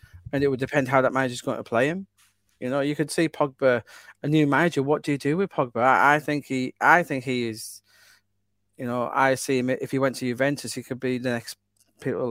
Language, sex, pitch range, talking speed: English, male, 115-145 Hz, 250 wpm